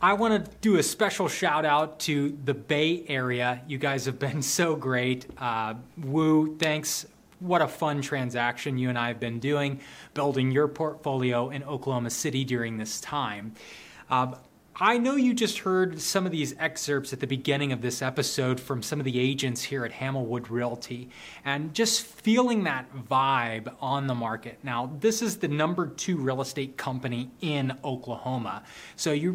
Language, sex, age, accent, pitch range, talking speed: English, male, 20-39, American, 125-165 Hz, 175 wpm